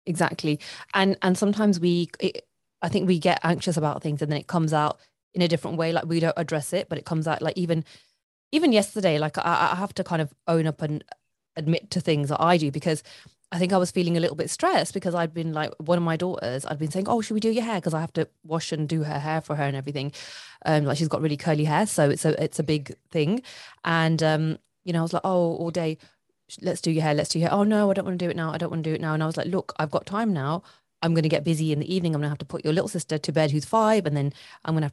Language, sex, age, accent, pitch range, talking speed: English, female, 20-39, British, 155-190 Hz, 300 wpm